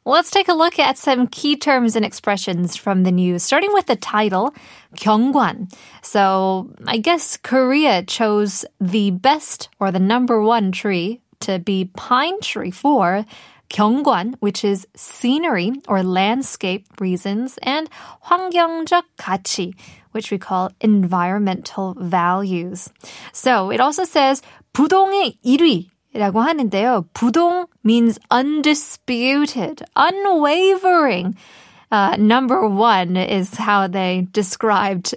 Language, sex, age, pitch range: Korean, female, 20-39, 195-275 Hz